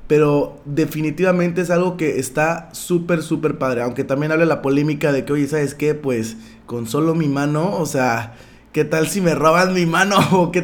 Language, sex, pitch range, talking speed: Spanish, male, 130-160 Hz, 195 wpm